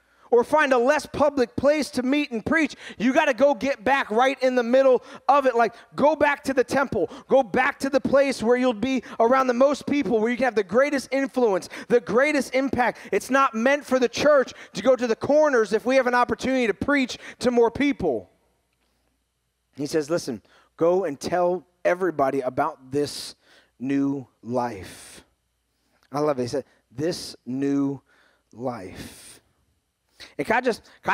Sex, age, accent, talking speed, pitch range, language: male, 30-49, American, 180 wpm, 160-255 Hz, English